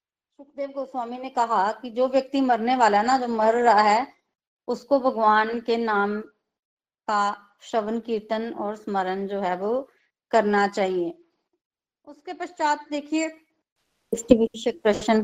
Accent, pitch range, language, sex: native, 220-290 Hz, Hindi, female